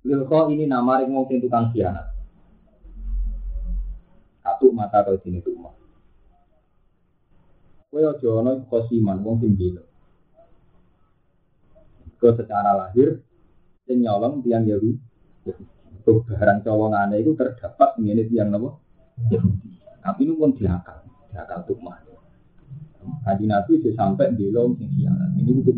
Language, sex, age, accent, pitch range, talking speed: Indonesian, male, 30-49, native, 110-155 Hz, 120 wpm